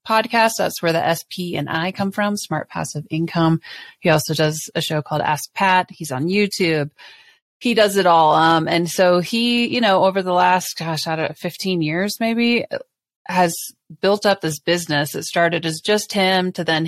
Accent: American